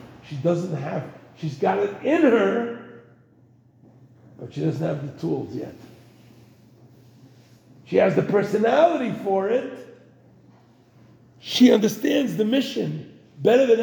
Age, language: 50-69, English